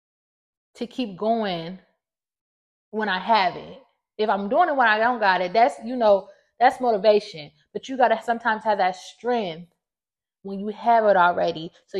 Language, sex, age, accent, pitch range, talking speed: English, female, 20-39, American, 190-230 Hz, 175 wpm